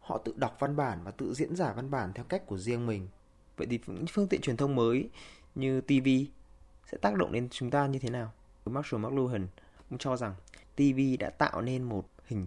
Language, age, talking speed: Vietnamese, 20-39, 220 wpm